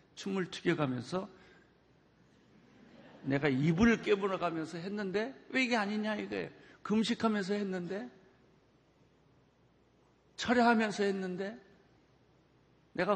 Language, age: Korean, 50-69